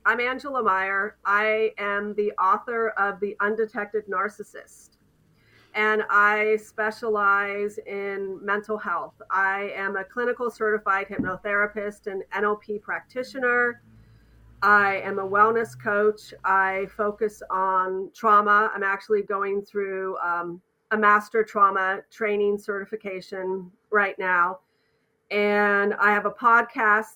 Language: English